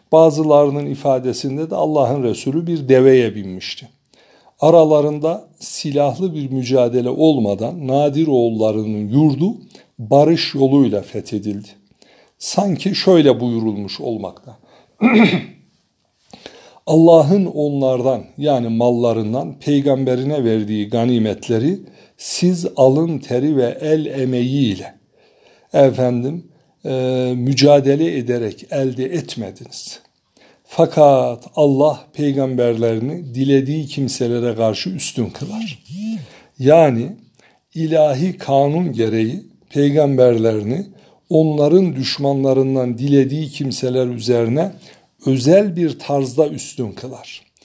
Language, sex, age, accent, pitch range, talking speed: Turkish, male, 60-79, native, 125-155 Hz, 80 wpm